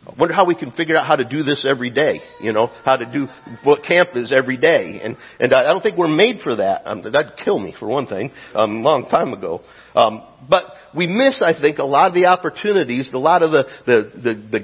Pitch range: 120-170 Hz